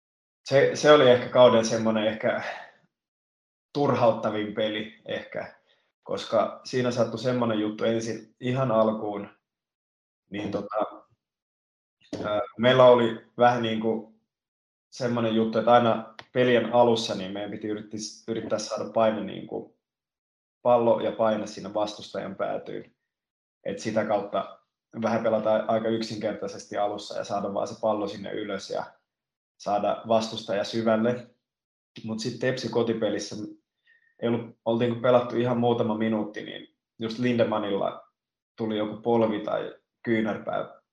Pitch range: 110-120 Hz